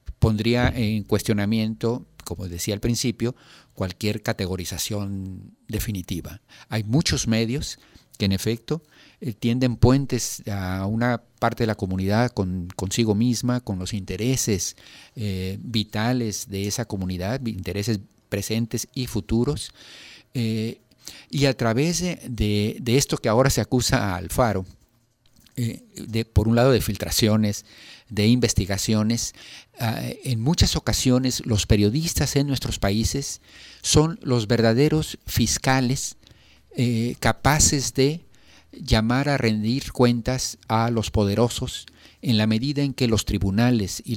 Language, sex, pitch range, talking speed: Spanish, male, 105-125 Hz, 125 wpm